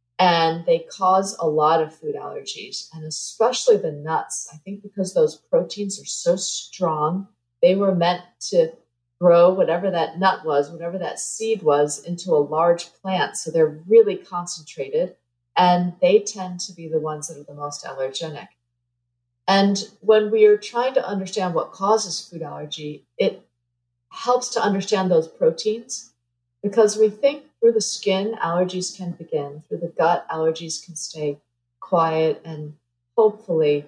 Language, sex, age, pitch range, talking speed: English, female, 40-59, 155-195 Hz, 155 wpm